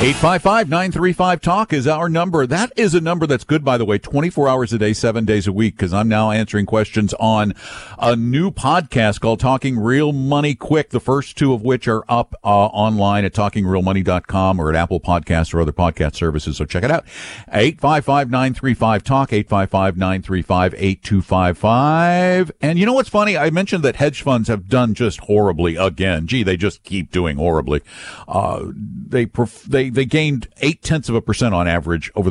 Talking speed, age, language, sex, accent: 175 wpm, 50-69, English, male, American